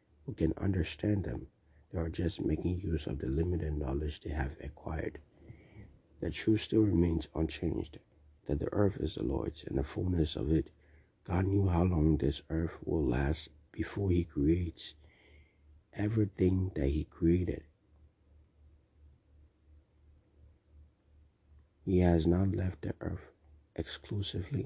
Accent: American